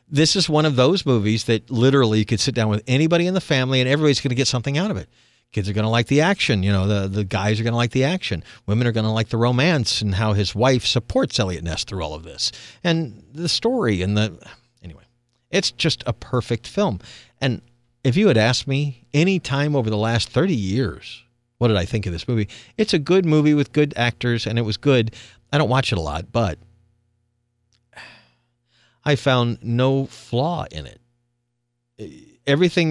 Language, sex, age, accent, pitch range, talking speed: English, male, 50-69, American, 105-135 Hz, 215 wpm